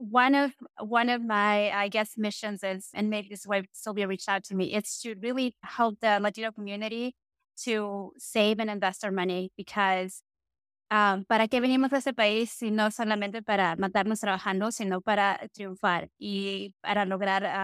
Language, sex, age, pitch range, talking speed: English, female, 20-39, 200-235 Hz, 175 wpm